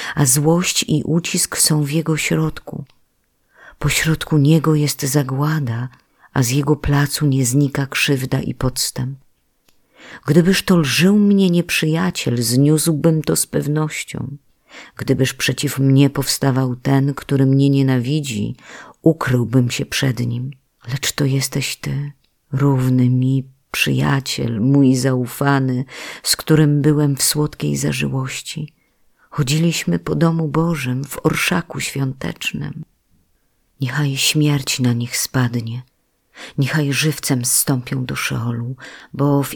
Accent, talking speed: native, 115 wpm